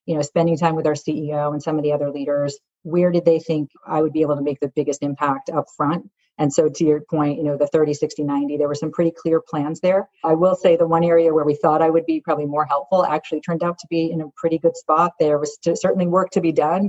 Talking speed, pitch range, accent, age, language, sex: 280 wpm, 145-165 Hz, American, 40-59, English, female